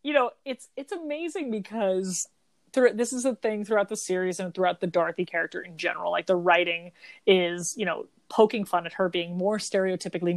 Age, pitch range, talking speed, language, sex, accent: 30-49, 180-225 Hz, 195 wpm, English, female, American